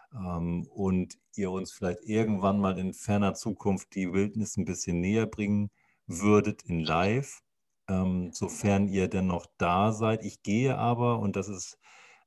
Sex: male